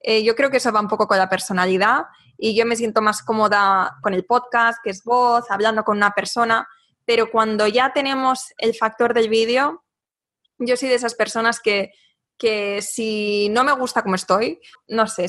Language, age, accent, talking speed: Spanish, 20-39, Spanish, 195 wpm